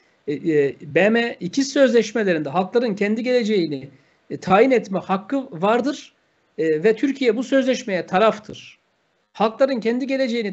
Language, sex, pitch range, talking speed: Turkish, male, 185-245 Hz, 105 wpm